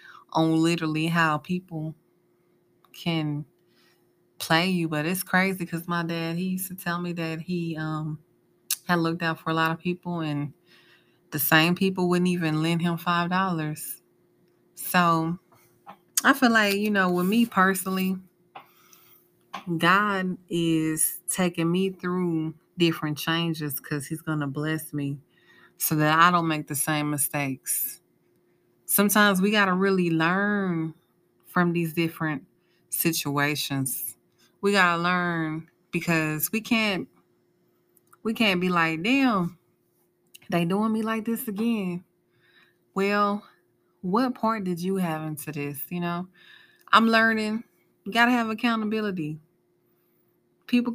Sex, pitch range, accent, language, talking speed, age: female, 160-205 Hz, American, English, 135 wpm, 20-39